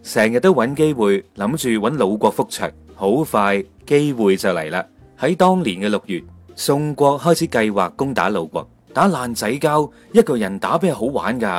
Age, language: 30-49, Chinese